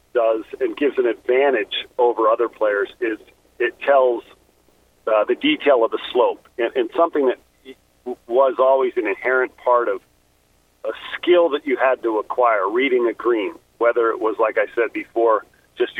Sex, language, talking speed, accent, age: male, English, 170 wpm, American, 40-59